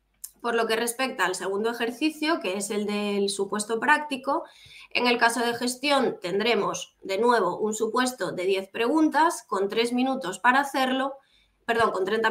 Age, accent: 20-39, Spanish